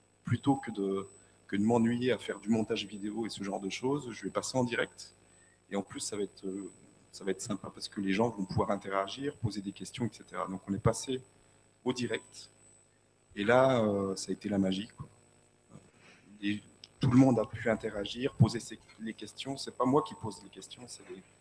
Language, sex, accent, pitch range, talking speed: French, male, French, 95-115 Hz, 215 wpm